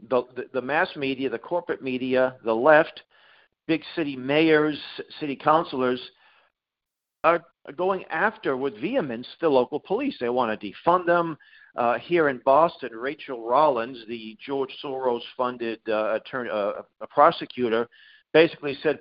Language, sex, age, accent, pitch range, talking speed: English, male, 50-69, American, 130-175 Hz, 140 wpm